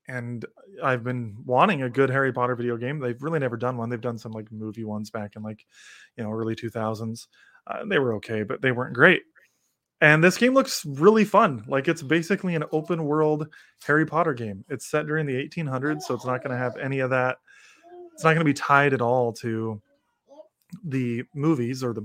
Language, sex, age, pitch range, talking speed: English, male, 20-39, 120-160 Hz, 210 wpm